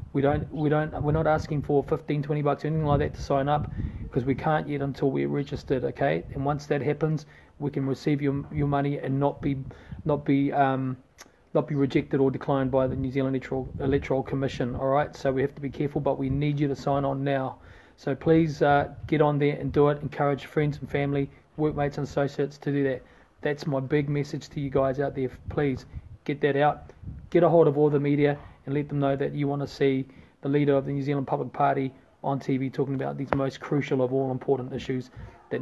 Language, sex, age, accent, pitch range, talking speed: English, male, 30-49, Australian, 135-150 Hz, 230 wpm